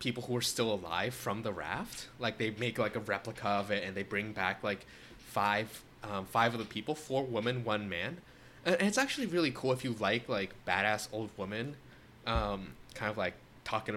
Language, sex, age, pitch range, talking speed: English, male, 20-39, 105-130 Hz, 205 wpm